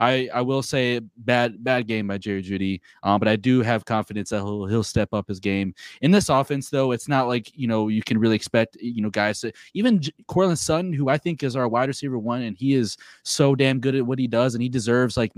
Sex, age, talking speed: male, 20-39, 260 wpm